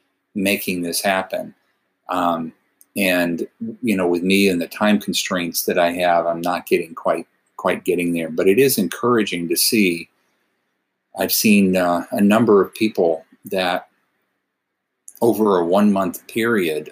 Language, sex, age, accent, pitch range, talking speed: English, male, 50-69, American, 85-95 Hz, 145 wpm